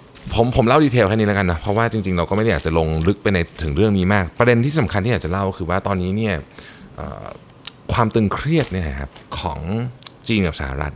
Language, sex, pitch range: Thai, male, 85-120 Hz